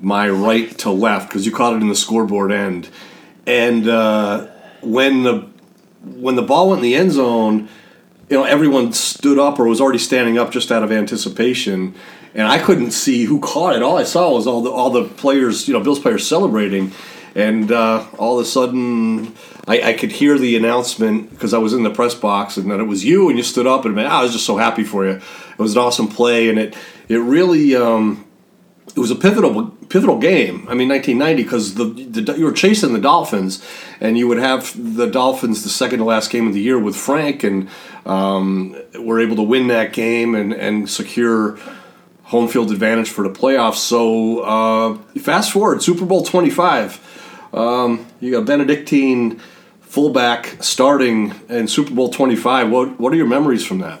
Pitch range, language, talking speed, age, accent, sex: 110-130 Hz, English, 200 wpm, 40-59, American, male